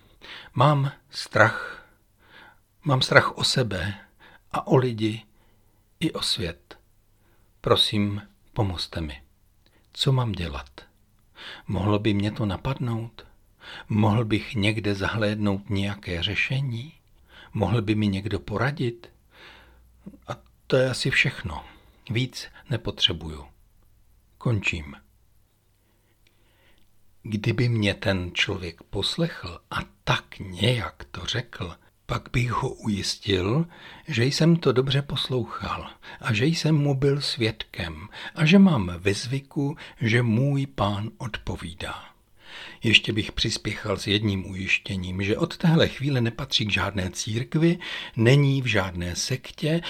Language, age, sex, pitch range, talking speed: Czech, 60-79, male, 100-130 Hz, 115 wpm